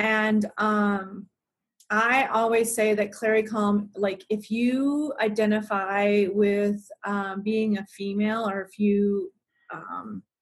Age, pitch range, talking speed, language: 30-49, 195-215 Hz, 120 wpm, English